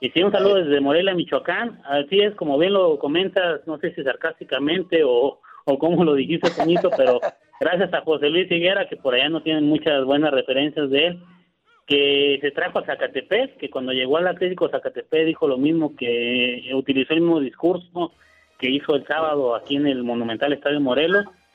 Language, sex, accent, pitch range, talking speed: Spanish, male, Mexican, 140-185 Hz, 185 wpm